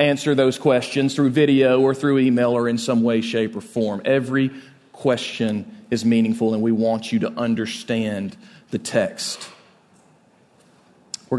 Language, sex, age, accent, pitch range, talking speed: English, male, 40-59, American, 125-170 Hz, 150 wpm